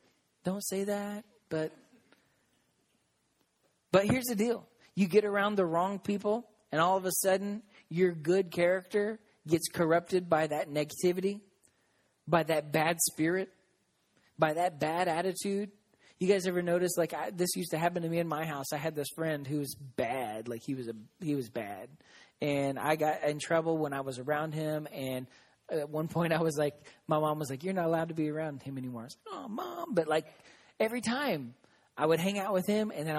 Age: 30-49